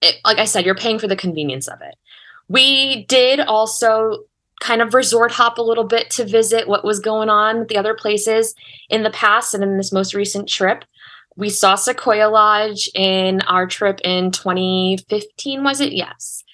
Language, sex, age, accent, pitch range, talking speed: English, female, 20-39, American, 185-235 Hz, 185 wpm